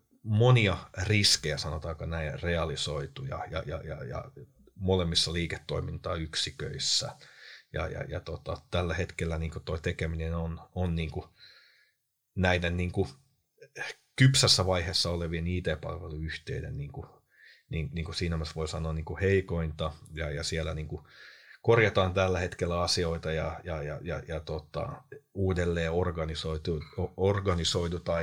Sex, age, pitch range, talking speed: male, 30-49, 80-95 Hz, 115 wpm